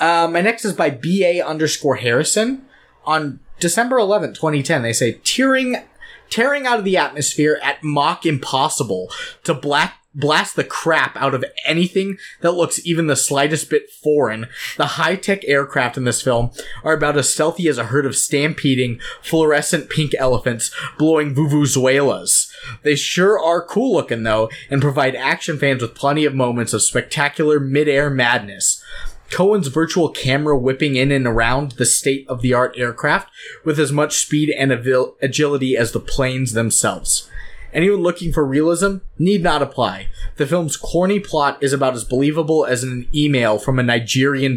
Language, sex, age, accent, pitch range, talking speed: English, male, 20-39, American, 130-165 Hz, 160 wpm